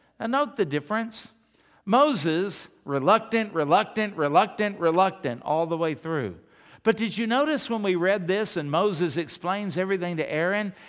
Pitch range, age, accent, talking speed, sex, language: 155-210 Hz, 50-69, American, 150 wpm, male, English